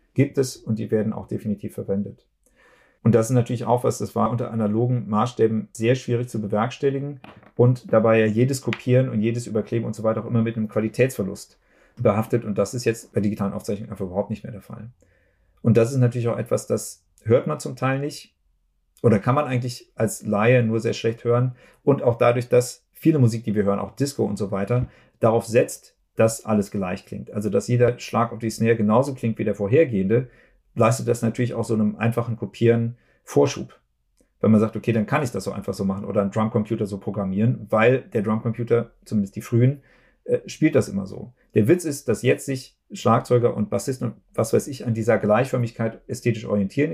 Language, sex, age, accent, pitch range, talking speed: German, male, 40-59, German, 105-125 Hz, 205 wpm